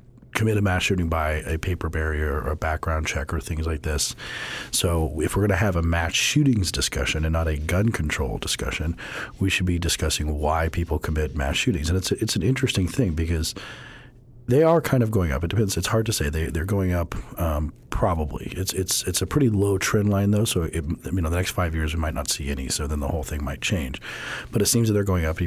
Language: English